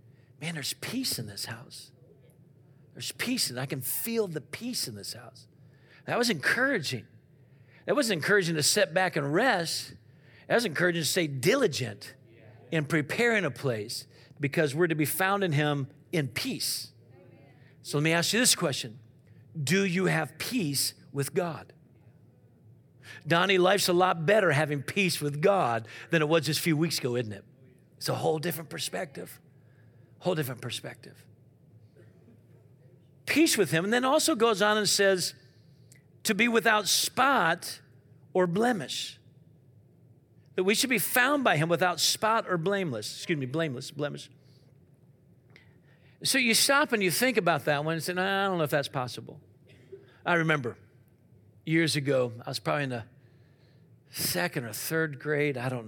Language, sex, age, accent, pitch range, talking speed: English, male, 50-69, American, 125-175 Hz, 160 wpm